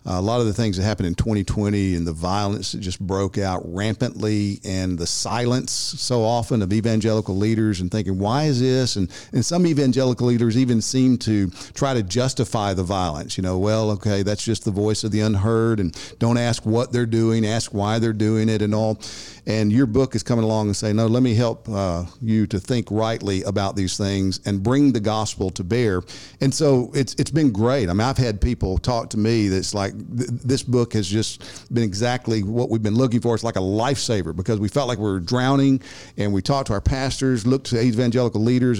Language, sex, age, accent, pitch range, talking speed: English, male, 50-69, American, 105-130 Hz, 220 wpm